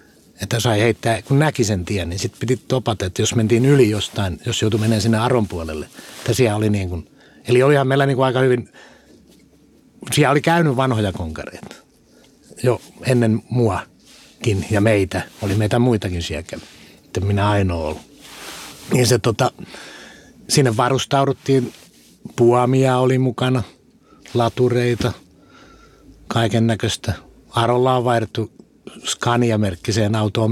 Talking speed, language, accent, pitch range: 130 wpm, Finnish, native, 100-125 Hz